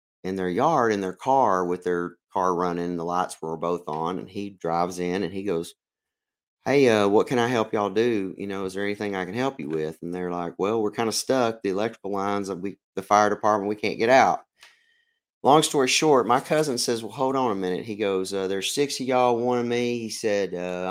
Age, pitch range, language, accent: 30-49, 95-120 Hz, English, American